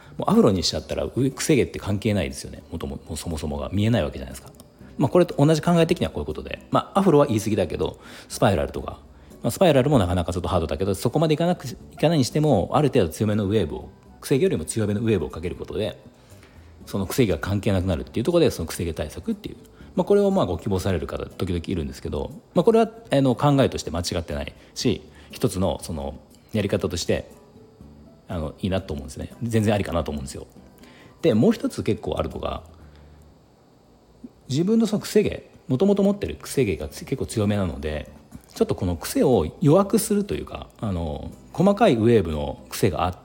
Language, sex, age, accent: Japanese, male, 40-59, native